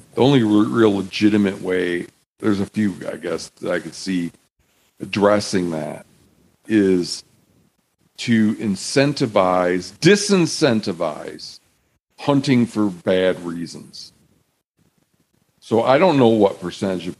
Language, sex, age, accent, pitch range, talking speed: English, male, 50-69, American, 85-105 Hz, 110 wpm